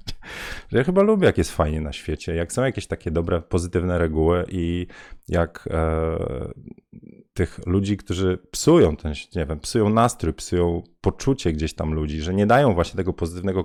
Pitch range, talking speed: 85-105 Hz, 165 wpm